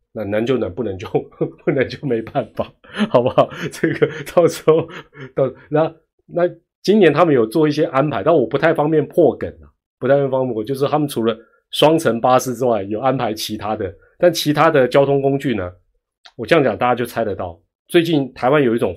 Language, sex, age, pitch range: Chinese, male, 30-49, 110-160 Hz